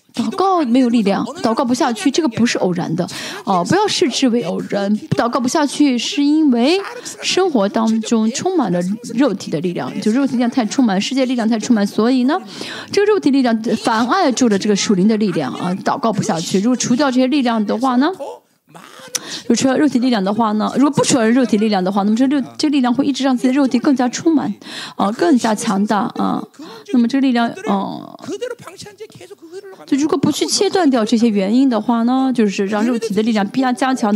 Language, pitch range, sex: Chinese, 210-290 Hz, female